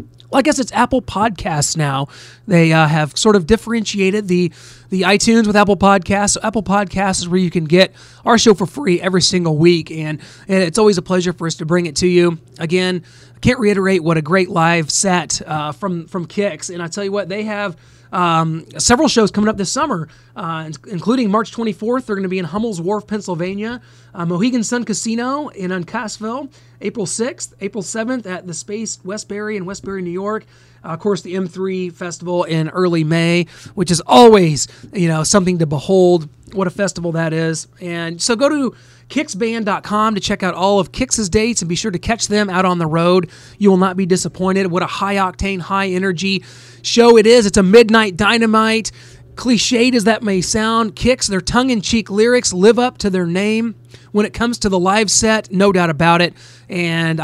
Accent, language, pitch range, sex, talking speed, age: American, English, 170-215 Hz, male, 200 wpm, 30-49